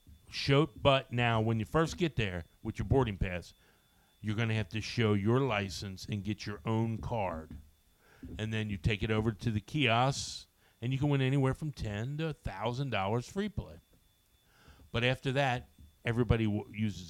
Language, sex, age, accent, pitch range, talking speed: English, male, 50-69, American, 95-125 Hz, 185 wpm